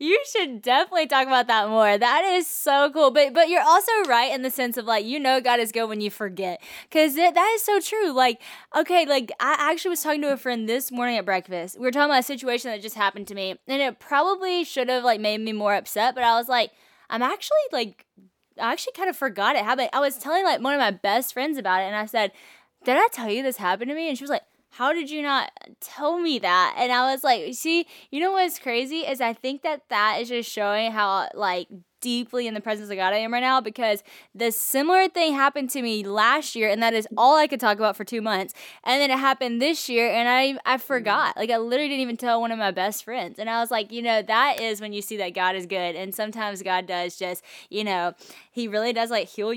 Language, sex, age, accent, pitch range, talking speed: English, female, 10-29, American, 210-280 Hz, 260 wpm